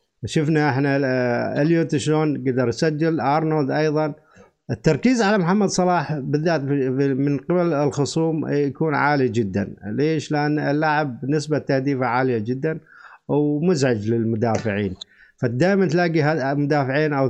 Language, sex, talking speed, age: Arabic, male, 110 wpm, 50-69